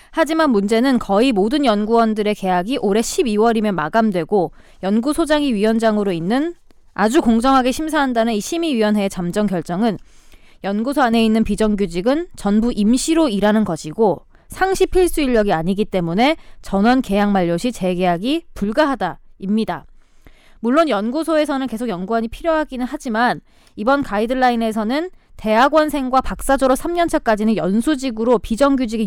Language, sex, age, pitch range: Korean, female, 20-39, 200-270 Hz